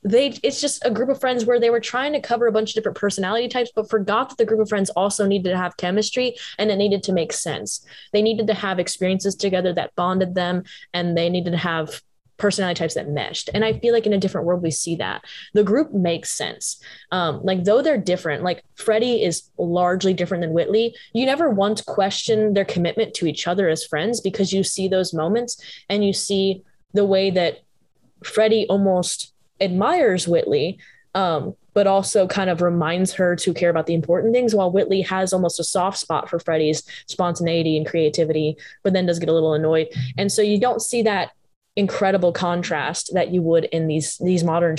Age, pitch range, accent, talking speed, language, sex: 10-29, 170-210 Hz, American, 210 wpm, English, female